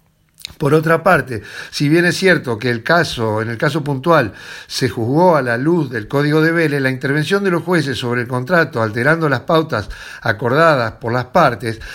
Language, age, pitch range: Spanish, 60-79, 130-175 Hz